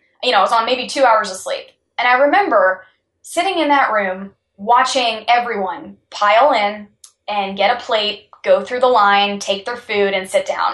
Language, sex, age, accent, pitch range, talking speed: English, female, 10-29, American, 195-255 Hz, 195 wpm